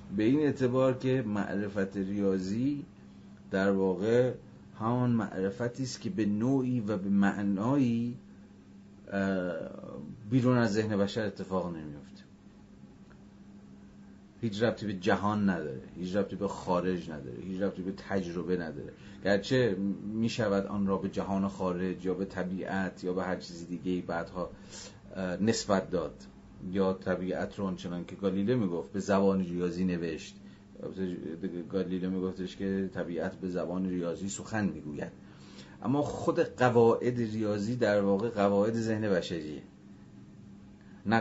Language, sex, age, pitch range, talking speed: Persian, male, 30-49, 90-105 Hz, 125 wpm